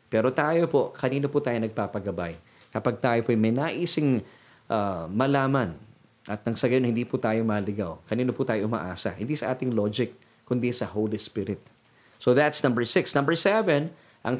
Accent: native